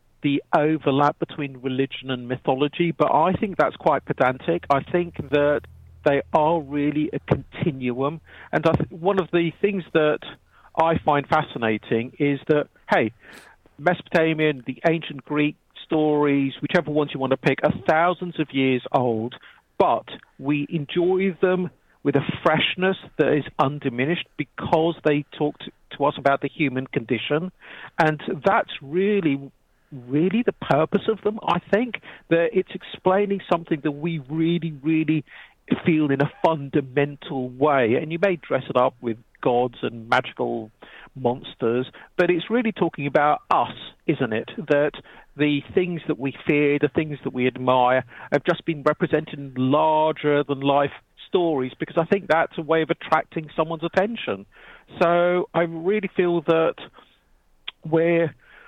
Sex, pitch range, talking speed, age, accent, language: male, 140-170 Hz, 150 wpm, 50-69, British, English